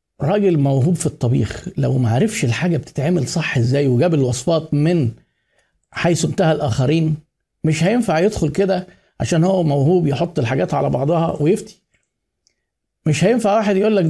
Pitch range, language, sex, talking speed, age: 135-175 Hz, Arabic, male, 145 wpm, 50-69